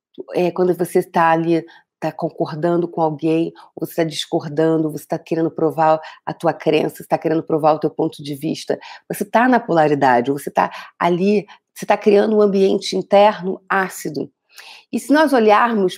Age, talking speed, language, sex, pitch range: 40-59, 170 wpm, Portuguese, female, 160-195 Hz